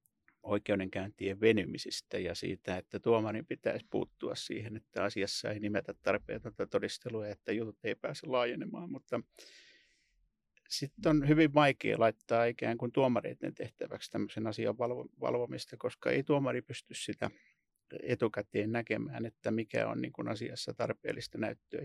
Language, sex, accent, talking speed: Finnish, male, native, 125 wpm